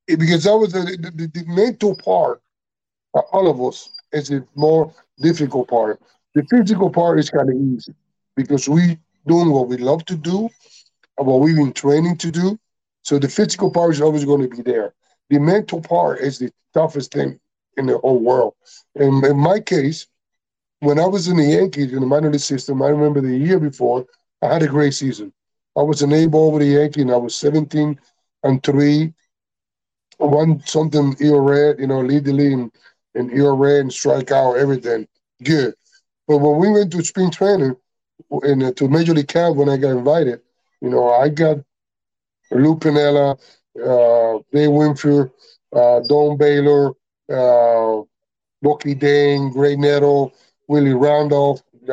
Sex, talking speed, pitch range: male, 175 wpm, 140-165 Hz